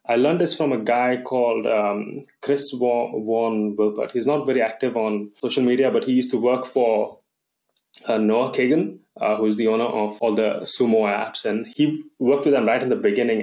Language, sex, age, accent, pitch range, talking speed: English, male, 20-39, Indian, 105-135 Hz, 205 wpm